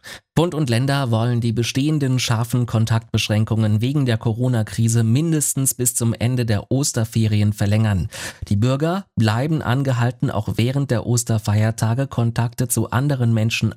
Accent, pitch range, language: German, 110-130 Hz, German